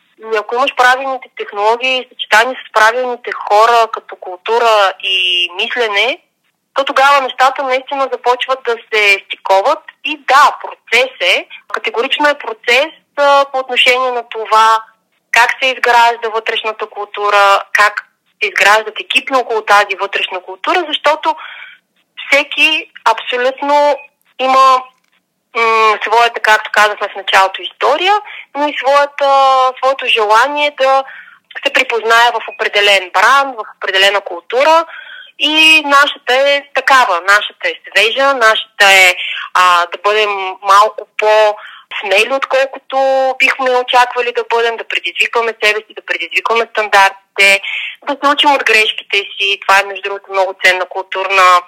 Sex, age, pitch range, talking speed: female, 30-49, 205-270 Hz, 125 wpm